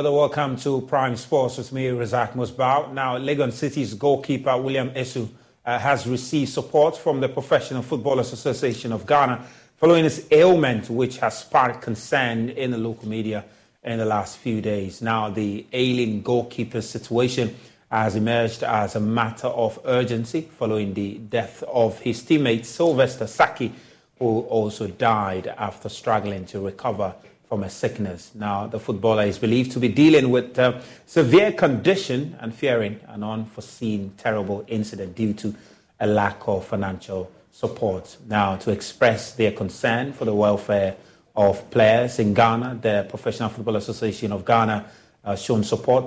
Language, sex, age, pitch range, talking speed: English, male, 30-49, 105-125 Hz, 155 wpm